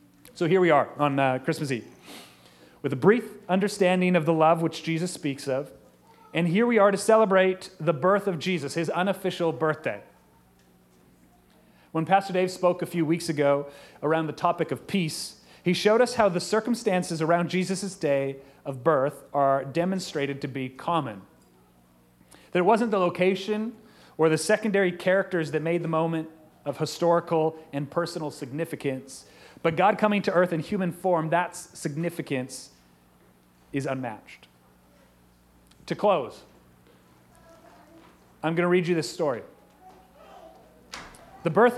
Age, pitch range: 30-49, 140-190 Hz